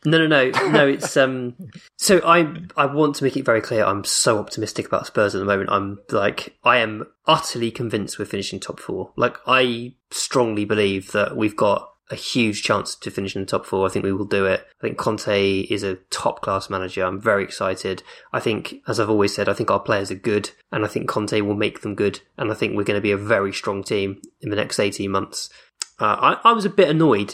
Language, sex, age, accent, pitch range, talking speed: English, male, 20-39, British, 105-140 Hz, 240 wpm